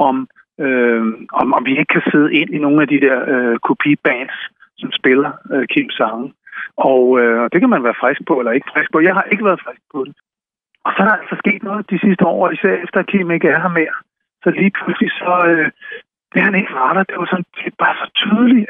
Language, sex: Danish, male